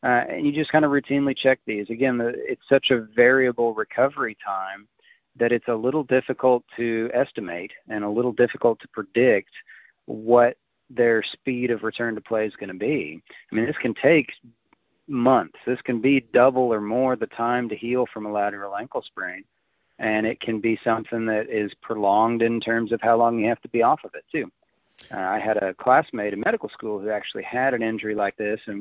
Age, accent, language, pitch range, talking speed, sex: 40-59, American, English, 105-120 Hz, 205 wpm, male